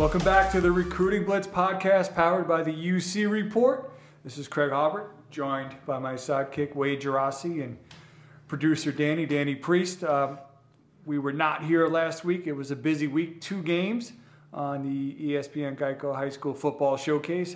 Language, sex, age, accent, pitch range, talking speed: English, male, 40-59, American, 135-155 Hz, 165 wpm